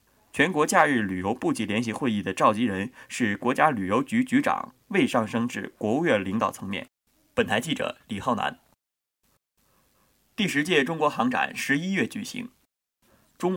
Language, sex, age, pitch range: Chinese, male, 20-39, 145-235 Hz